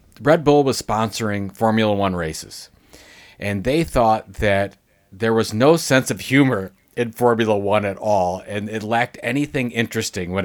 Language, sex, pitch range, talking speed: English, male, 100-125 Hz, 160 wpm